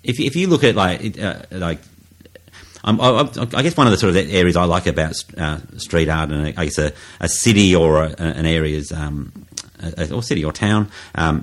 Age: 40-59